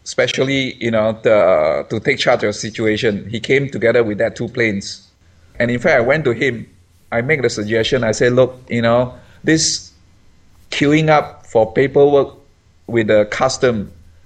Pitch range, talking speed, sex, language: 105-135 Hz, 175 wpm, male, English